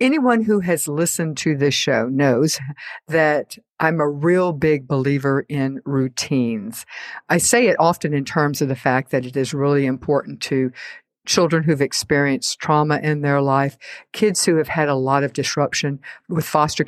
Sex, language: female, English